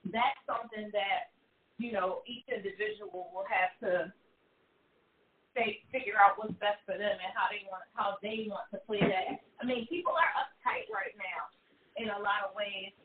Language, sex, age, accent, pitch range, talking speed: English, female, 30-49, American, 210-280 Hz, 185 wpm